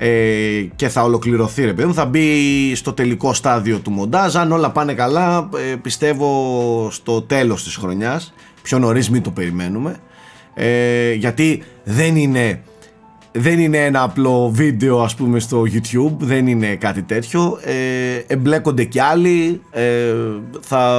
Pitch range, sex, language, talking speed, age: 115-150 Hz, male, Greek, 135 wpm, 30-49